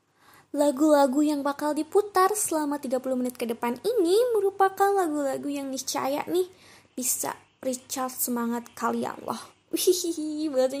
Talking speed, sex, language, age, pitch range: 120 wpm, female, Indonesian, 20-39, 250-355 Hz